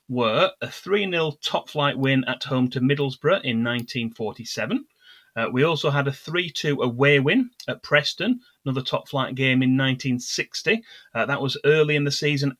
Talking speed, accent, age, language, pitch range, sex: 160 wpm, British, 30-49, English, 125-150 Hz, male